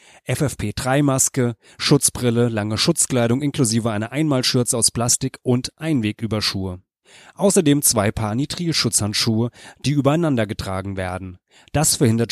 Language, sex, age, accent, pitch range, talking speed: German, male, 30-49, German, 110-140 Hz, 100 wpm